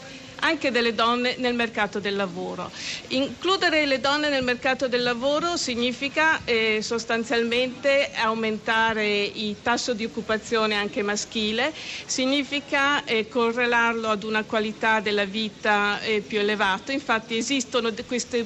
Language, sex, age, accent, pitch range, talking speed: Italian, female, 50-69, native, 215-260 Hz, 125 wpm